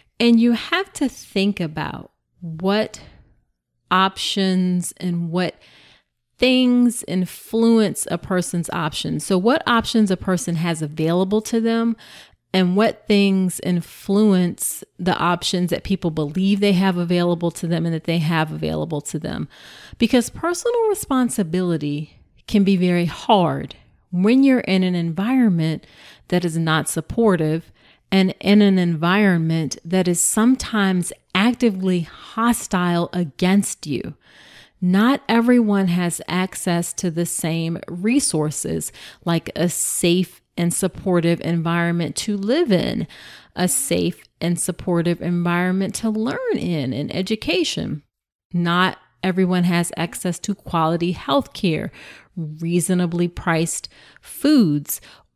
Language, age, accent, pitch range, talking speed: English, 30-49, American, 170-210 Hz, 120 wpm